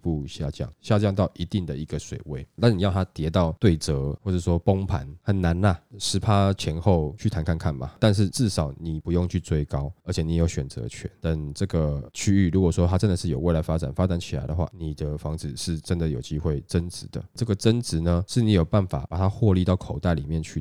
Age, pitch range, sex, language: 20-39, 80-100 Hz, male, Chinese